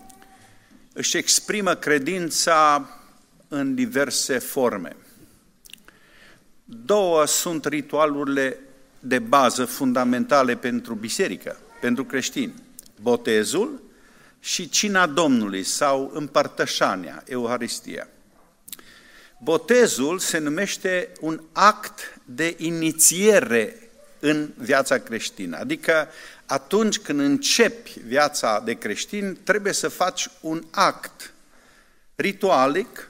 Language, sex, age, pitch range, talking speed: Romanian, male, 50-69, 125-205 Hz, 85 wpm